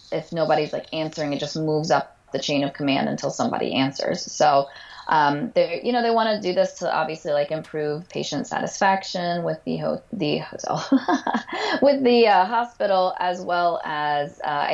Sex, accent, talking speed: female, American, 180 wpm